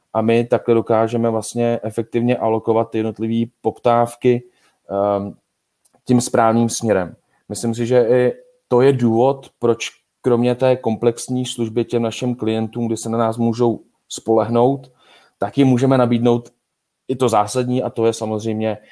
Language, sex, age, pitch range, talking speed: Czech, male, 30-49, 110-125 Hz, 135 wpm